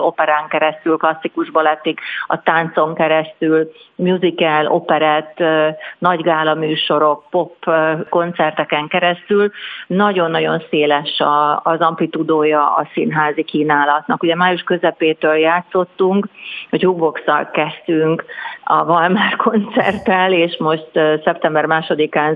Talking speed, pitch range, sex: 95 wpm, 155-170 Hz, female